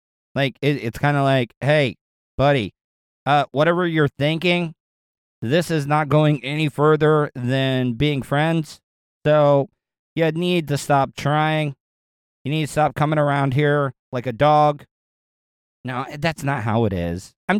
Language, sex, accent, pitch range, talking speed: English, male, American, 125-155 Hz, 150 wpm